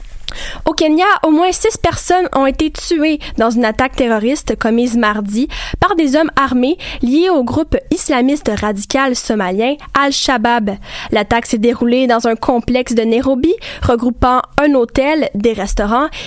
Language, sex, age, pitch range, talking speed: French, female, 10-29, 230-285 Hz, 145 wpm